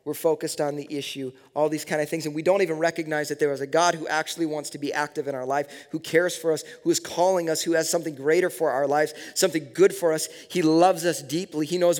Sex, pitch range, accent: male, 155-205 Hz, American